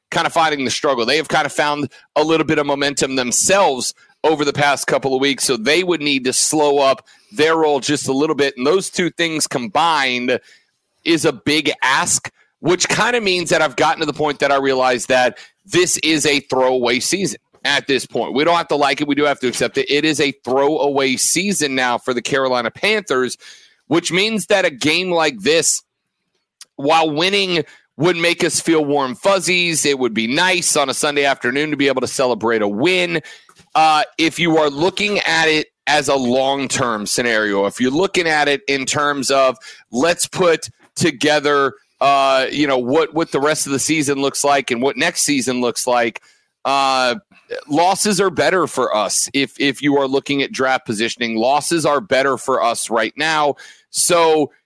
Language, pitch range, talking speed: English, 135-160 Hz, 200 wpm